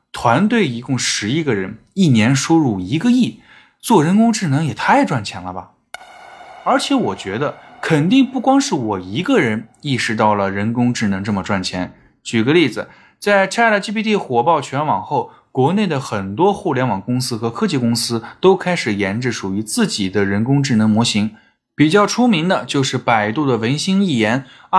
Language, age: Chinese, 20-39